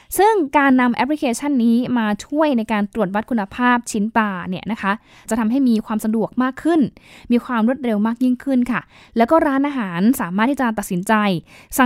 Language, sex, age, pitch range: Thai, female, 10-29, 210-275 Hz